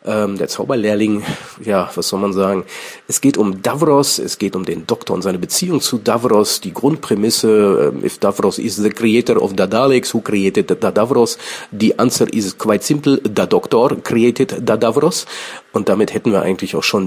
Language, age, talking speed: German, 40-59, 185 wpm